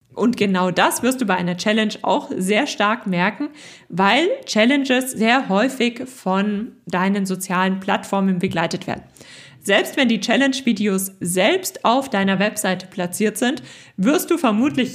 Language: German